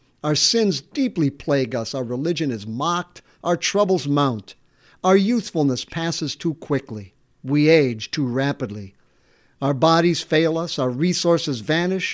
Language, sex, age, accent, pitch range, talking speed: English, male, 50-69, American, 145-195 Hz, 140 wpm